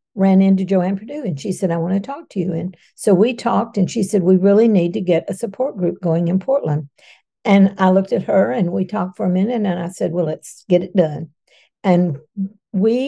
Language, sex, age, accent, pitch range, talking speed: English, female, 60-79, American, 180-210 Hz, 240 wpm